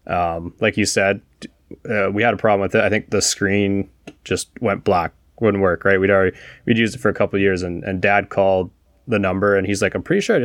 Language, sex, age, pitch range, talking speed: English, male, 20-39, 95-105 Hz, 245 wpm